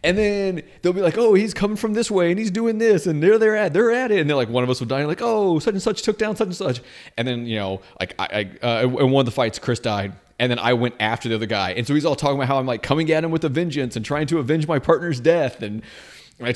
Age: 30-49